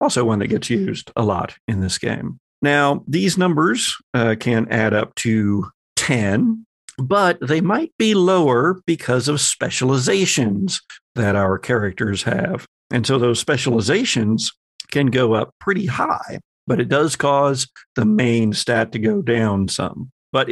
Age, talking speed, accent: 50-69, 150 wpm, American